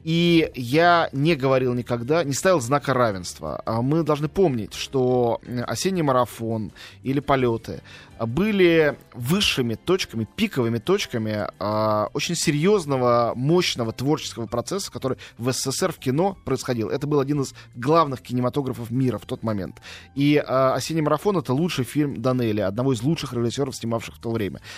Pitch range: 120-165 Hz